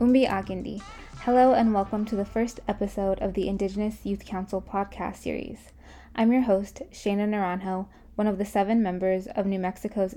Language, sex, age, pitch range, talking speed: English, female, 10-29, 185-215 Hz, 170 wpm